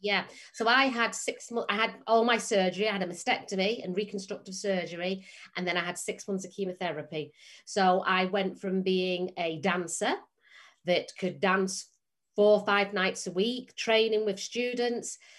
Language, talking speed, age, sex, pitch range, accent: English, 170 wpm, 40-59, female, 175-205 Hz, British